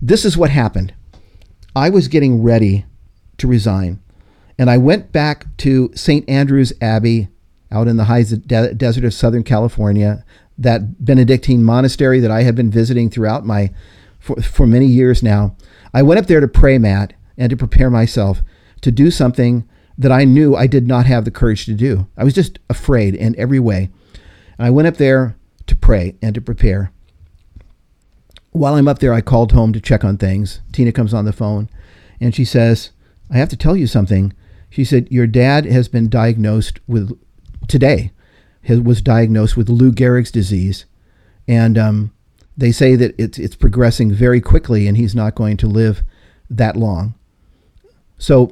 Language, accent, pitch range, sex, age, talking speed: English, American, 100-130 Hz, male, 50-69, 180 wpm